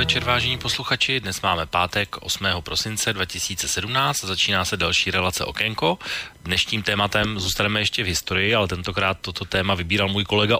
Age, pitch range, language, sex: 30-49, 85-105 Hz, Slovak, male